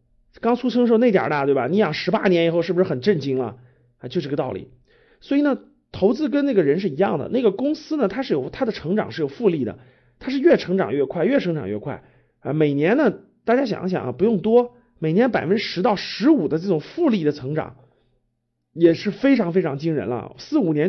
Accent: native